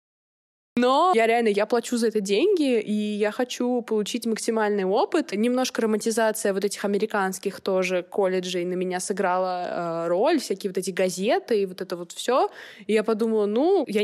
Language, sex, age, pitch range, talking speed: Russian, female, 20-39, 190-230 Hz, 165 wpm